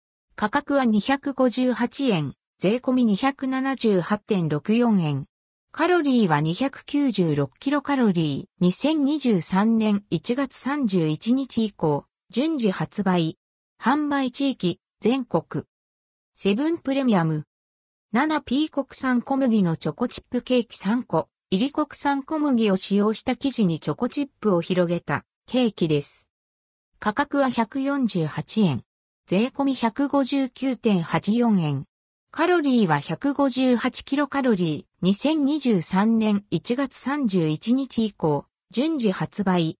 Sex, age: female, 50-69